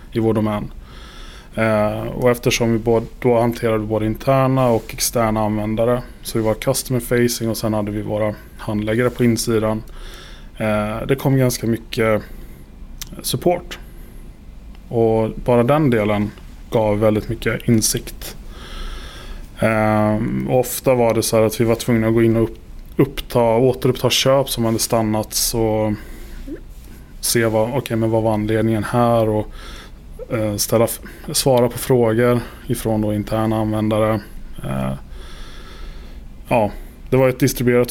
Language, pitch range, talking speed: Swedish, 110-120 Hz, 140 wpm